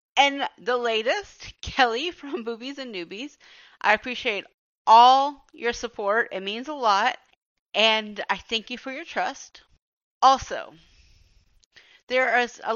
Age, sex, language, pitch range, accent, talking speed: 30-49, female, English, 185-250 Hz, American, 130 wpm